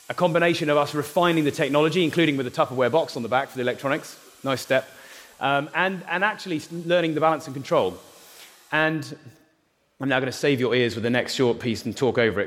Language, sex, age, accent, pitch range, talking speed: English, male, 30-49, British, 125-160 Hz, 220 wpm